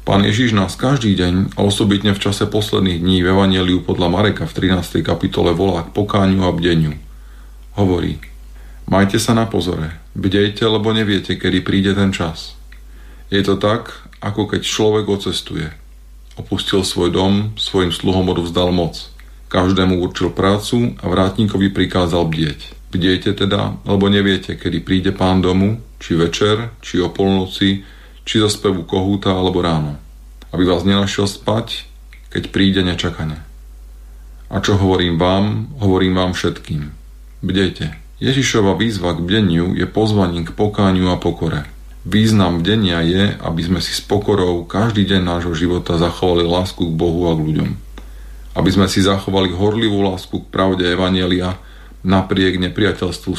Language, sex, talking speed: Slovak, male, 145 wpm